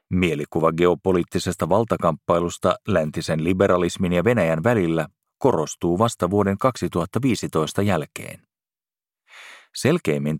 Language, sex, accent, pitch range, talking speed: Finnish, male, native, 85-105 Hz, 80 wpm